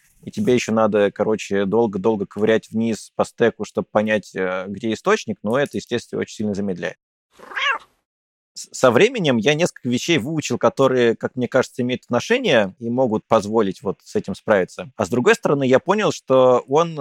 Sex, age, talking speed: male, 20-39, 165 wpm